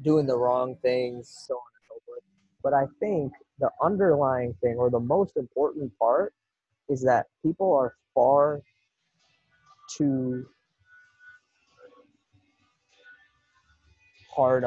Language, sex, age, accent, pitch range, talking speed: English, male, 20-39, American, 120-150 Hz, 110 wpm